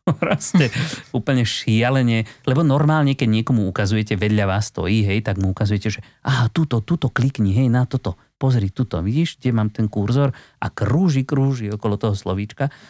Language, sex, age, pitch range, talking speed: Slovak, male, 30-49, 105-140 Hz, 160 wpm